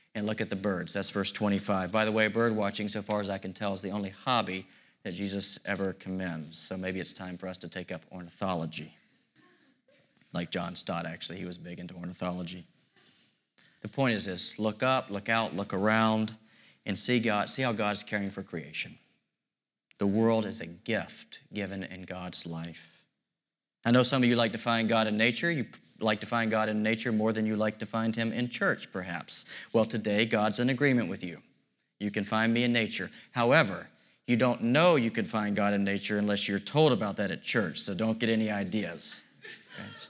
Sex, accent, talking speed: male, American, 210 wpm